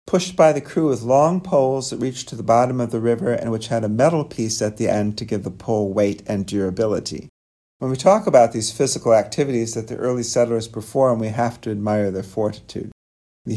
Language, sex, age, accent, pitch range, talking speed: English, male, 50-69, American, 110-140 Hz, 220 wpm